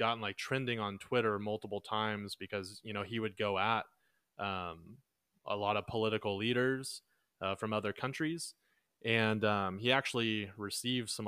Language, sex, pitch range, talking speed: English, male, 95-115 Hz, 160 wpm